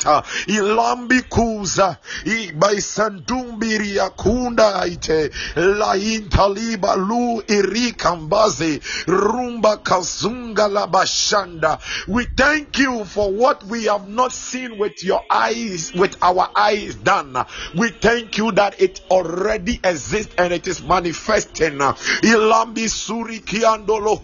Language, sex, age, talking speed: English, male, 50-69, 65 wpm